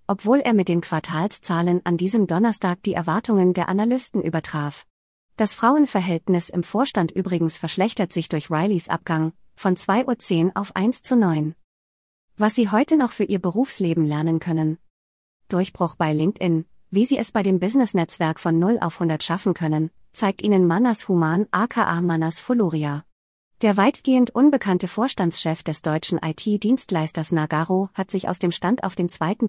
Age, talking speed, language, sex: 30-49, 155 wpm, German, female